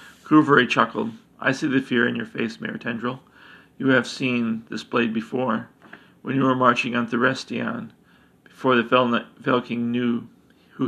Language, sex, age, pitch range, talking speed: English, male, 40-59, 120-130 Hz, 155 wpm